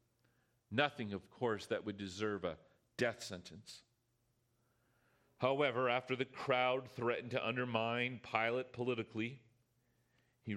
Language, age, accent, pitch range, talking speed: English, 40-59, American, 110-125 Hz, 110 wpm